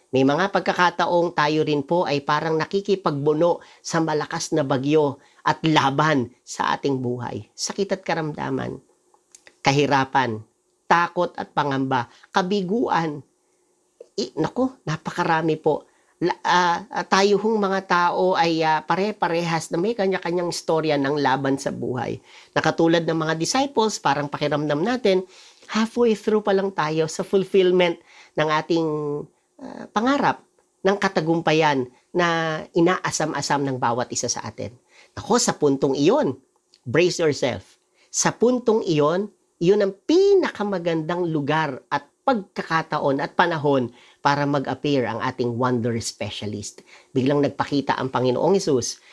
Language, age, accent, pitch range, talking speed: English, 40-59, Filipino, 140-195 Hz, 120 wpm